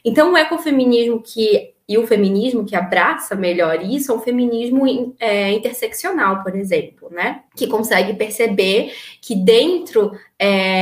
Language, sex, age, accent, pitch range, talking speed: Portuguese, female, 20-39, Brazilian, 200-255 Hz, 145 wpm